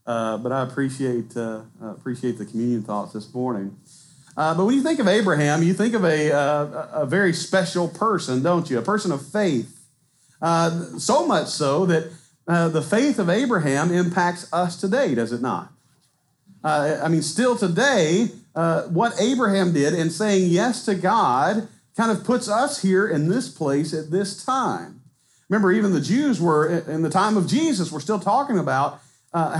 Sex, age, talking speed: male, 40-59, 180 wpm